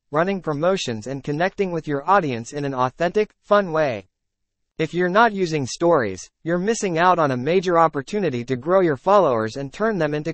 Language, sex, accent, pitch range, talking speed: English, male, American, 130-190 Hz, 185 wpm